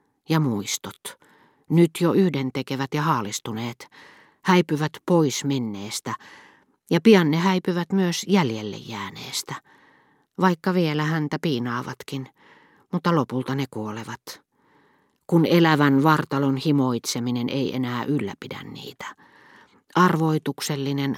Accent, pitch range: native, 125-165 Hz